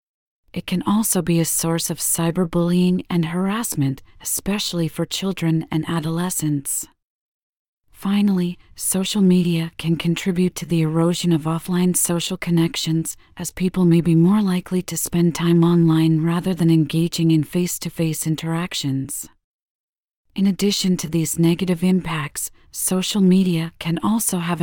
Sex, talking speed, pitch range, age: female, 130 wpm, 160-185 Hz, 40-59